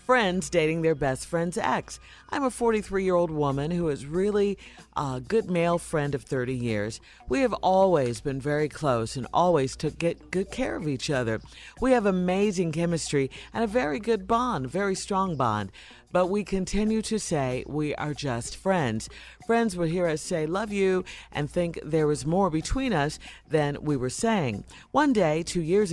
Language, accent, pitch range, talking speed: English, American, 140-190 Hz, 180 wpm